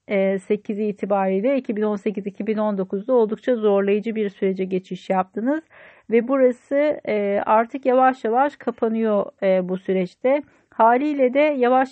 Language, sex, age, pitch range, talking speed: Turkish, female, 40-59, 205-255 Hz, 100 wpm